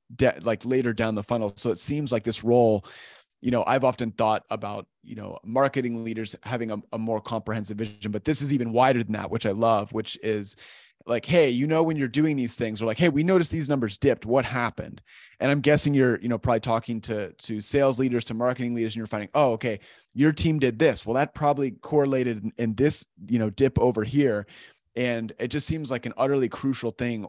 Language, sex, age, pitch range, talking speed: English, male, 30-49, 110-130 Hz, 230 wpm